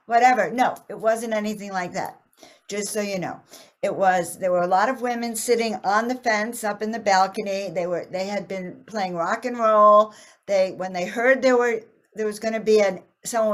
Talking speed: 215 wpm